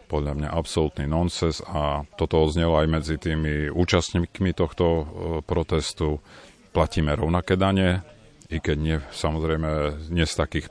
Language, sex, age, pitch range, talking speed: Slovak, male, 40-59, 75-85 Hz, 130 wpm